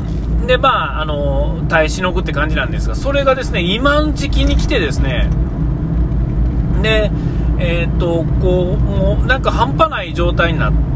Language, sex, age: Japanese, male, 40-59